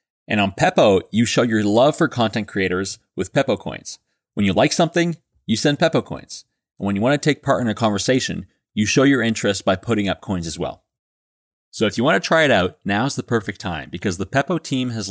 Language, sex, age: English, male, 30-49